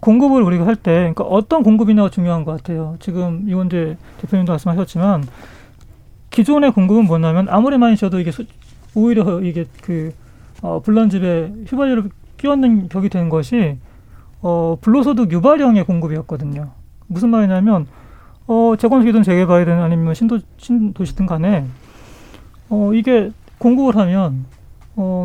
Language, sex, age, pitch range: Korean, male, 40-59, 165-225 Hz